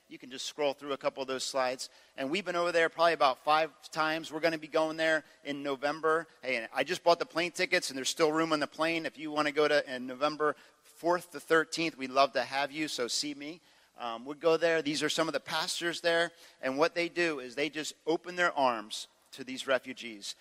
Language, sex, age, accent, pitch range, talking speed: English, male, 40-59, American, 140-170 Hz, 250 wpm